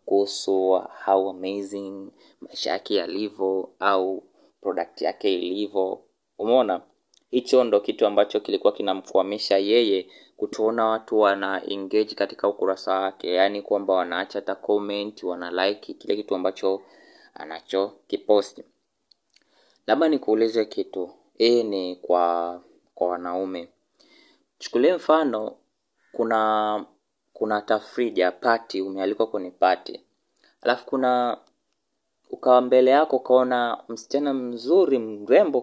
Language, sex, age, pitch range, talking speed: Swahili, male, 20-39, 95-125 Hz, 100 wpm